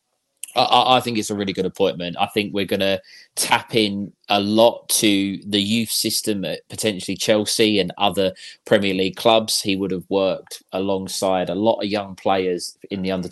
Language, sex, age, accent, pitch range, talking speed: English, male, 20-39, British, 95-110 Hz, 185 wpm